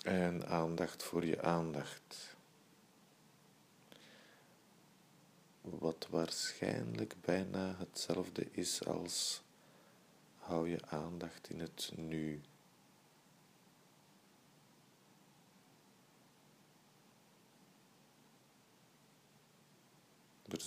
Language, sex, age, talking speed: Dutch, male, 50-69, 50 wpm